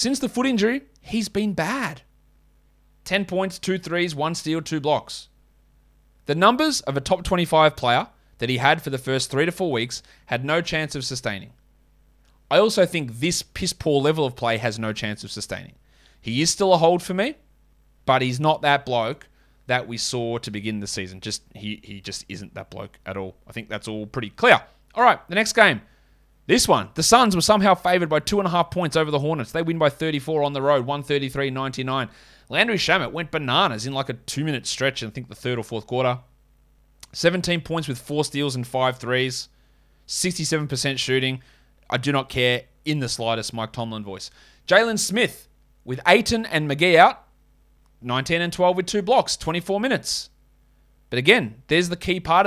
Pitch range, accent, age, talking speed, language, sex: 120-170 Hz, Australian, 20-39, 195 wpm, English, male